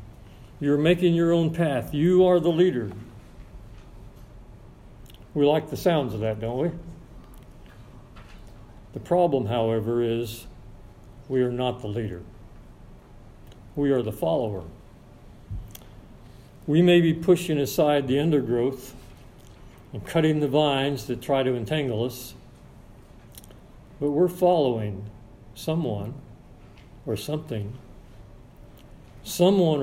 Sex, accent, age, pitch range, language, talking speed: male, American, 50-69, 110-150 Hz, English, 105 wpm